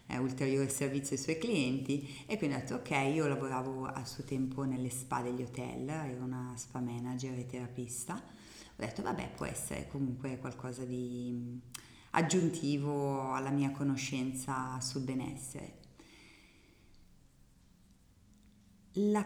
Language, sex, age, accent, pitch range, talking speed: Italian, female, 30-49, native, 130-165 Hz, 125 wpm